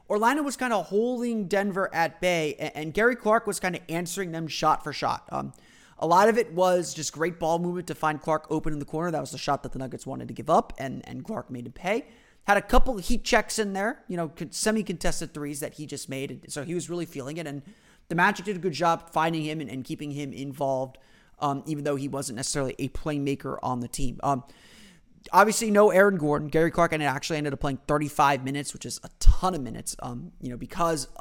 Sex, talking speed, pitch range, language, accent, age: male, 240 wpm, 140-185 Hz, English, American, 30-49